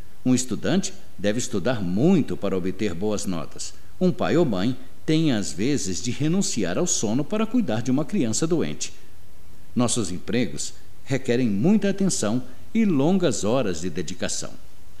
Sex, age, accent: male, 60-79, Brazilian